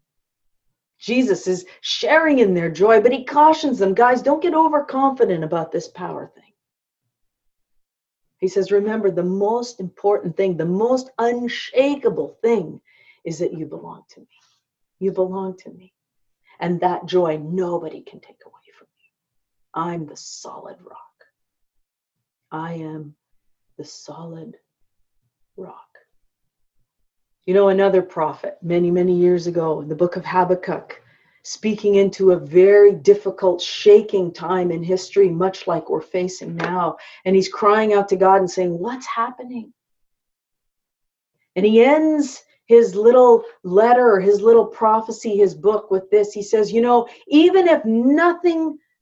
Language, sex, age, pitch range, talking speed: English, female, 40-59, 175-240 Hz, 140 wpm